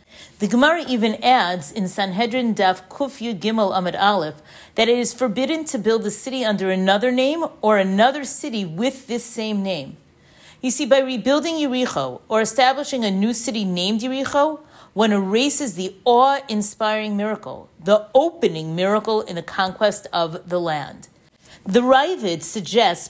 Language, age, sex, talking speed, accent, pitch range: English, 40-59, female, 150 wpm, American, 195-270 Hz